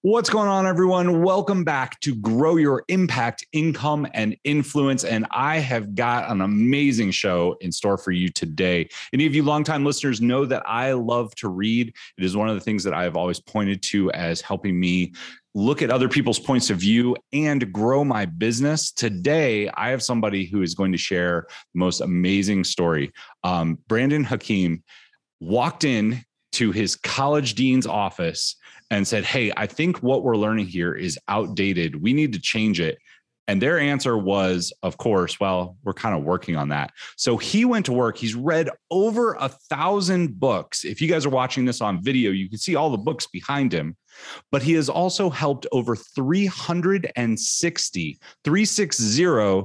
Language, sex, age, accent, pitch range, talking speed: English, male, 30-49, American, 100-150 Hz, 180 wpm